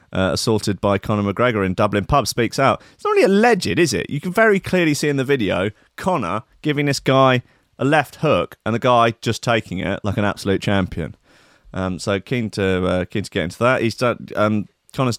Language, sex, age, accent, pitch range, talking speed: English, male, 30-49, British, 95-135 Hz, 215 wpm